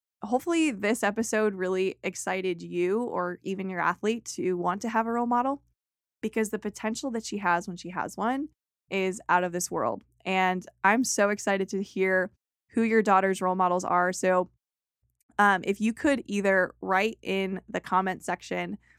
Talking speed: 175 wpm